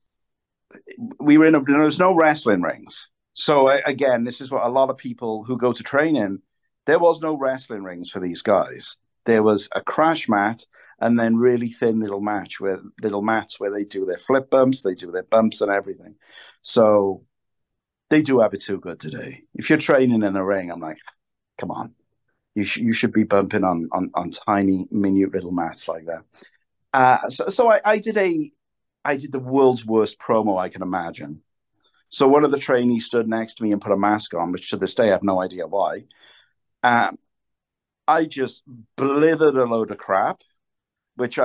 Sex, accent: male, British